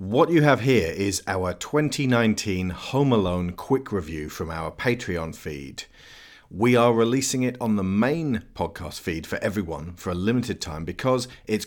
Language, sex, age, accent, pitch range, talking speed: English, male, 40-59, British, 90-135 Hz, 165 wpm